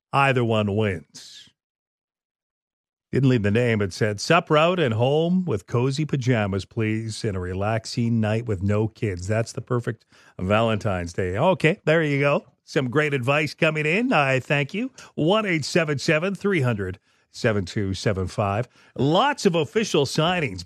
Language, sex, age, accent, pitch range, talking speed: English, male, 40-59, American, 110-150 Hz, 135 wpm